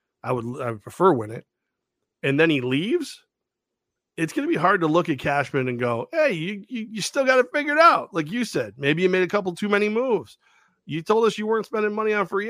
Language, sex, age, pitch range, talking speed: English, male, 40-59, 135-180 Hz, 250 wpm